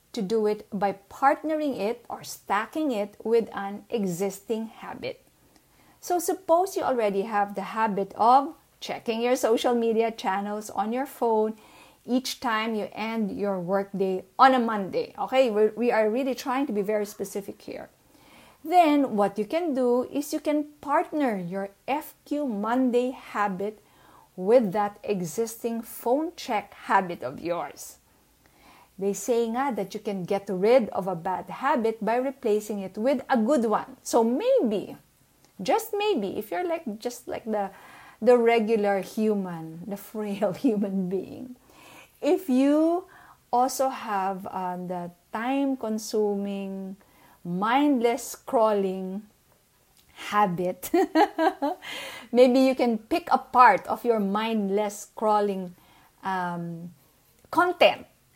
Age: 50-69